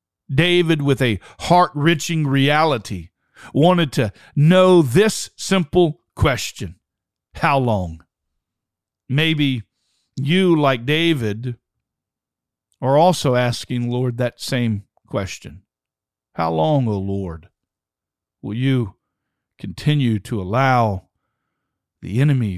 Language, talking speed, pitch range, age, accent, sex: English, 95 wpm, 110-150 Hz, 50-69, American, male